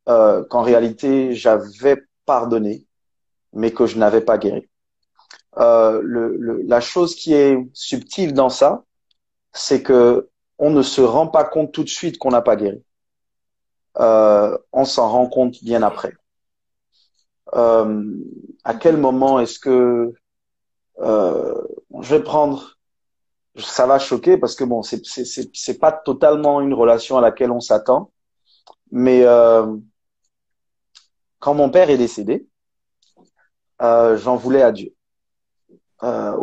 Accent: French